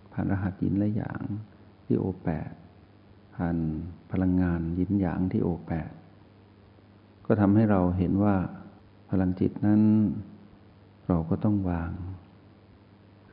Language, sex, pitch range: Thai, male, 90-105 Hz